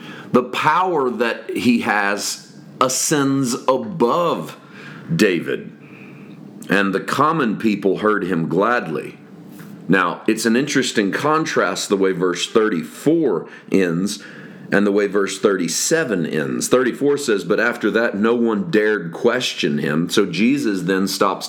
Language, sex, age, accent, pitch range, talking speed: English, male, 40-59, American, 95-125 Hz, 125 wpm